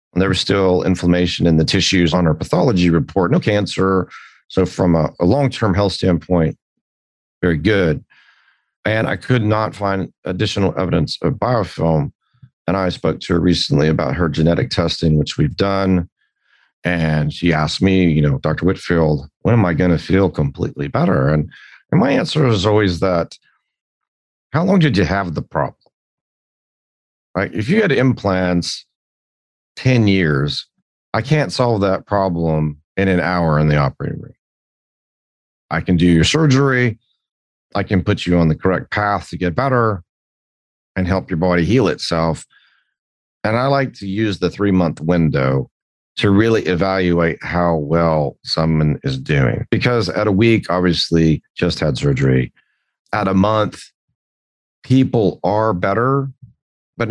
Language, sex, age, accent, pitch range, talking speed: English, male, 40-59, American, 80-110 Hz, 150 wpm